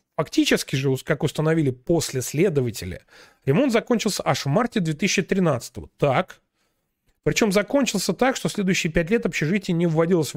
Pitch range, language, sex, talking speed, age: 145-205 Hz, Russian, male, 135 wpm, 30-49